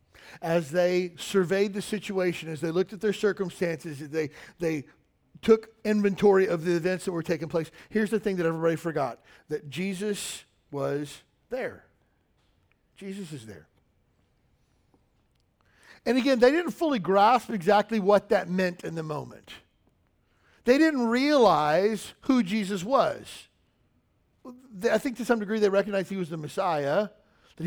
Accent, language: American, English